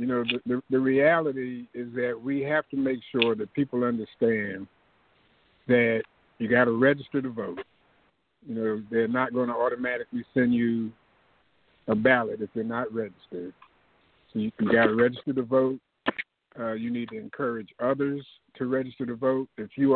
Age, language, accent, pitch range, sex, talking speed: 60-79, English, American, 115-140 Hz, male, 175 wpm